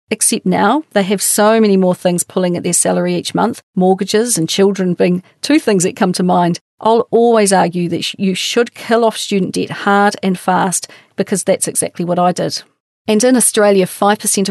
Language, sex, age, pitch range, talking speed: English, female, 40-59, 180-210 Hz, 195 wpm